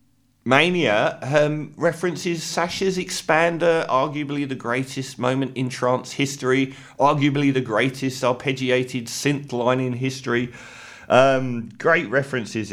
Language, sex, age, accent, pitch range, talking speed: English, male, 40-59, British, 110-145 Hz, 110 wpm